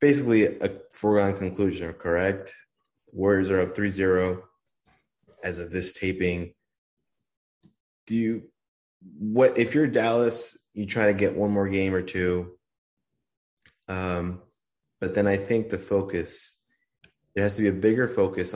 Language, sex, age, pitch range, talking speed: English, male, 20-39, 90-110 Hz, 135 wpm